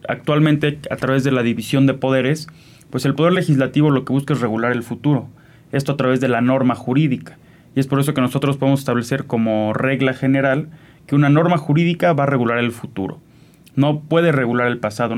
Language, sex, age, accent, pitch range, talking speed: Spanish, male, 30-49, Mexican, 125-150 Hz, 200 wpm